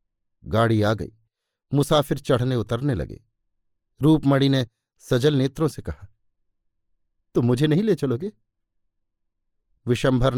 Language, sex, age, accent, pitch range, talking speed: Hindi, male, 50-69, native, 105-150 Hz, 110 wpm